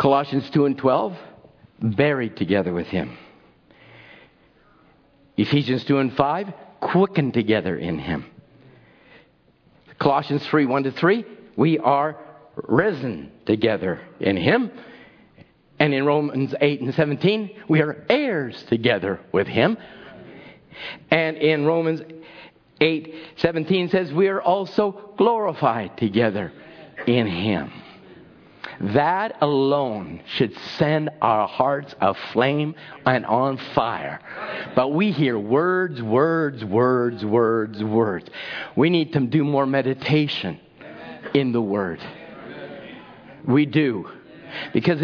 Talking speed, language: 110 wpm, English